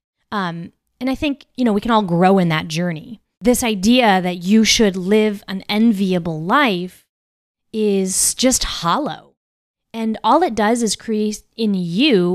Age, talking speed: 20-39, 160 wpm